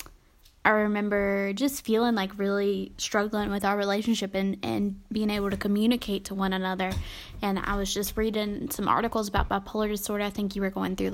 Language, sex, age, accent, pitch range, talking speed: English, female, 20-39, American, 200-220 Hz, 190 wpm